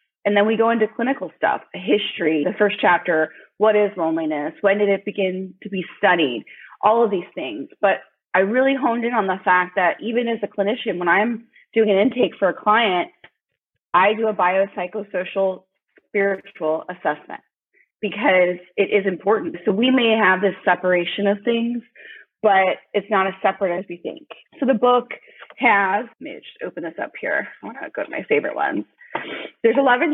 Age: 30-49